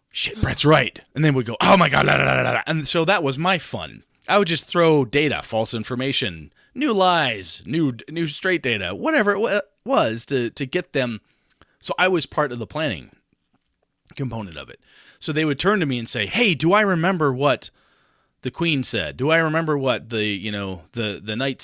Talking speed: 210 wpm